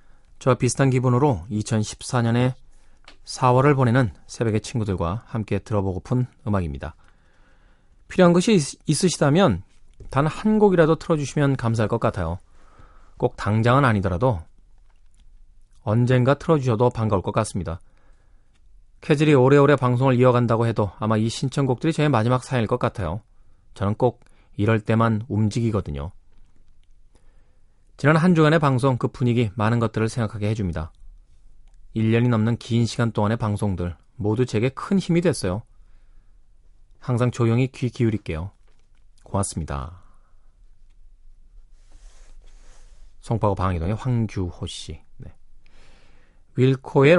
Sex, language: male, Korean